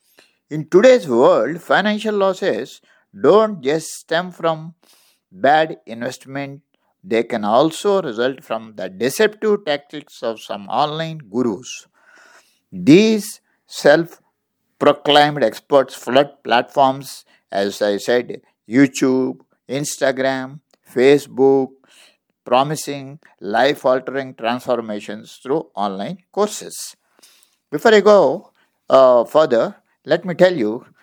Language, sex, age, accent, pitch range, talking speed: English, male, 60-79, Indian, 120-170 Hz, 95 wpm